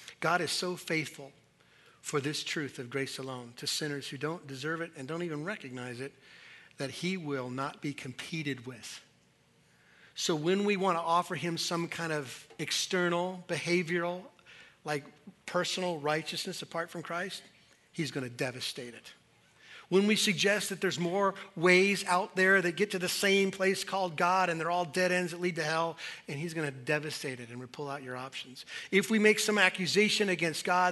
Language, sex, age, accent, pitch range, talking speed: English, male, 40-59, American, 150-200 Hz, 180 wpm